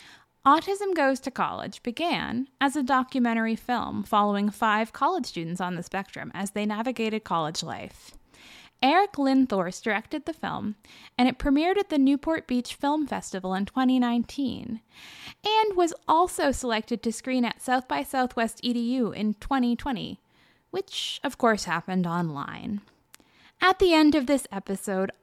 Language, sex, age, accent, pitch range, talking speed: English, female, 10-29, American, 205-280 Hz, 145 wpm